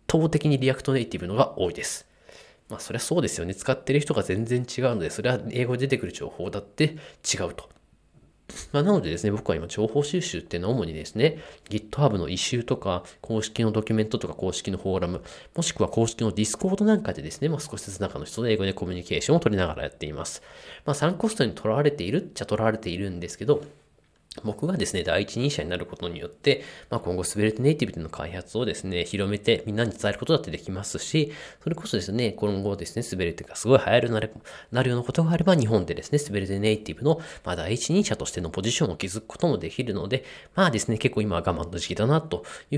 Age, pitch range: 20-39, 95-140 Hz